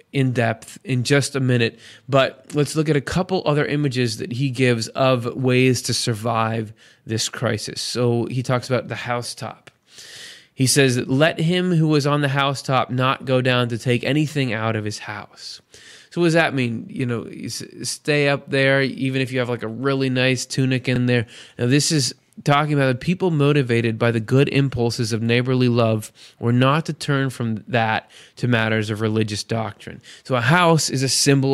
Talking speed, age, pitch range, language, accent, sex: 190 wpm, 20-39, 115-140 Hz, English, American, male